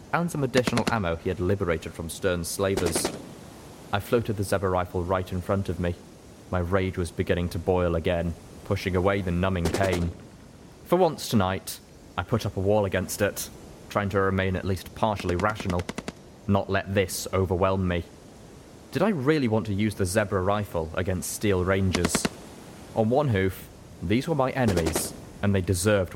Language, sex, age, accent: English, male, 20-39, British